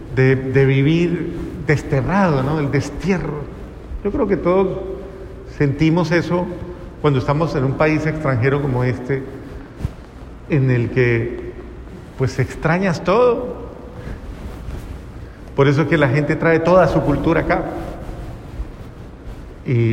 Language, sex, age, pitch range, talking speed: Spanish, male, 70-89, 135-180 Hz, 115 wpm